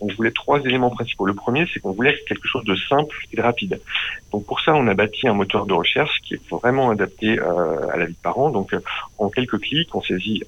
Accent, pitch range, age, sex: French, 95-110 Hz, 40-59, male